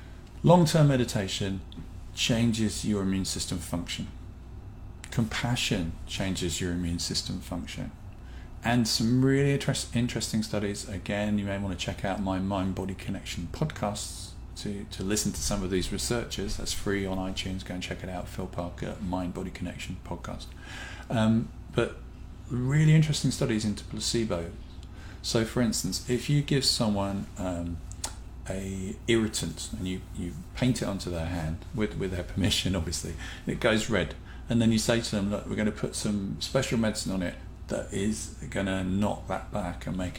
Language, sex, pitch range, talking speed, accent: English, male, 90-110 Hz, 160 wpm, British